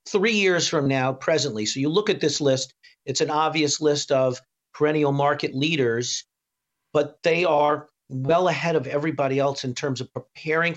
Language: English